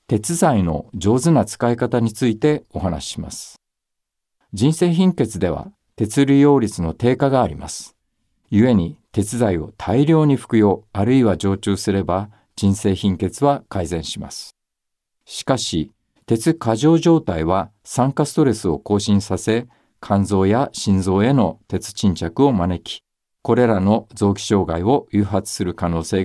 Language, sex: Japanese, male